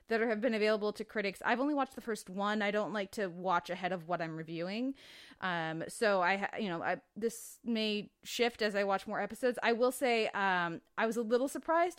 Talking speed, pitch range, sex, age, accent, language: 225 wpm, 200-250 Hz, female, 20-39, American, English